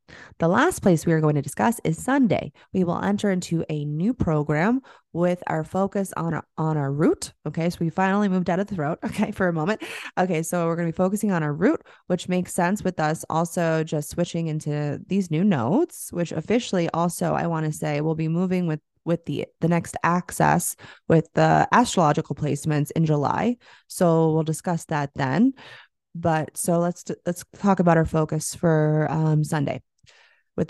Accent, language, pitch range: American, English, 155-185 Hz